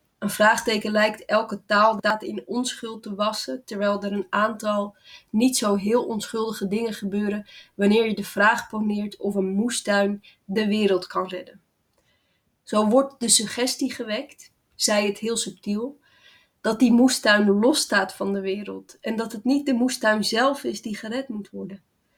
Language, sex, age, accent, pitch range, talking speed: Dutch, female, 20-39, Dutch, 205-240 Hz, 165 wpm